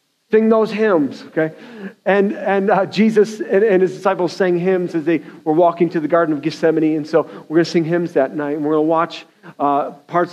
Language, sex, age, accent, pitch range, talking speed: English, male, 40-59, American, 160-190 Hz, 225 wpm